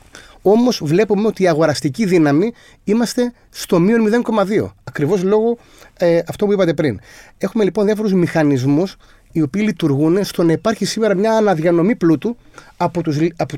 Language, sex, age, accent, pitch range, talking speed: Greek, male, 30-49, native, 145-200 Hz, 150 wpm